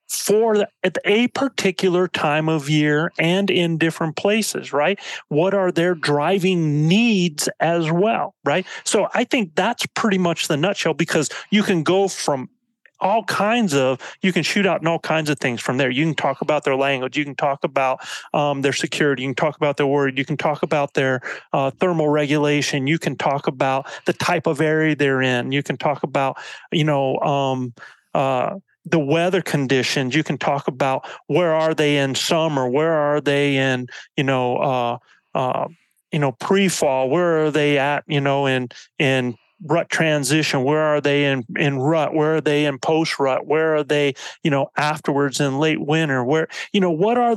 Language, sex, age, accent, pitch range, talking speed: English, male, 30-49, American, 140-180 Hz, 195 wpm